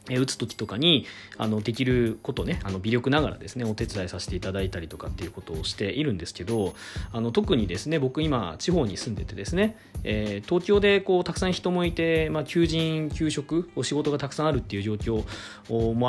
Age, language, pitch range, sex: 40-59, Japanese, 100-165 Hz, male